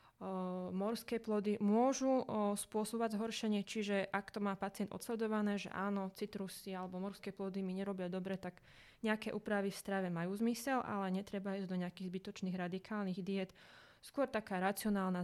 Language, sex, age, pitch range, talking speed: Slovak, female, 20-39, 195-225 Hz, 150 wpm